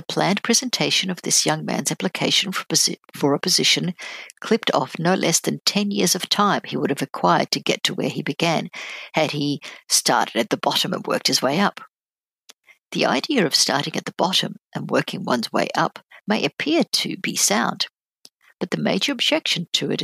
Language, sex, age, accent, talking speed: English, female, 60-79, Australian, 190 wpm